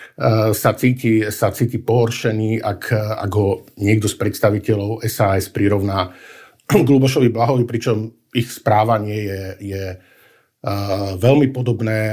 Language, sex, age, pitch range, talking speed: Slovak, male, 50-69, 100-115 Hz, 115 wpm